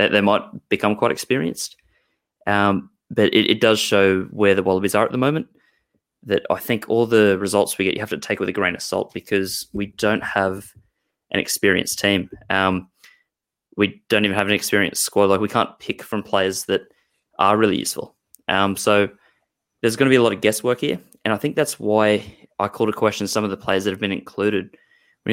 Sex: male